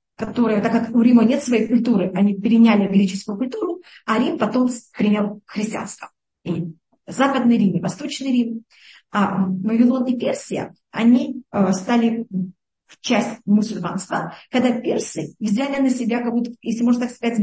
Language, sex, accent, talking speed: Russian, female, native, 145 wpm